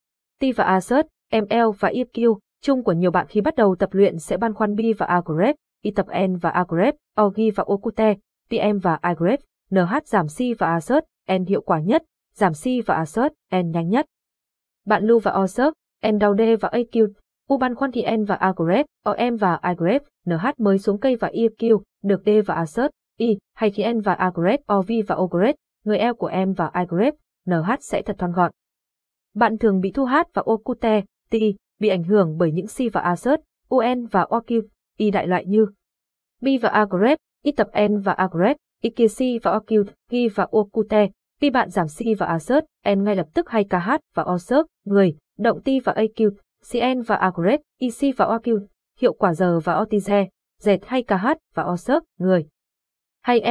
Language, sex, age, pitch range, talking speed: Vietnamese, female, 20-39, 185-240 Hz, 195 wpm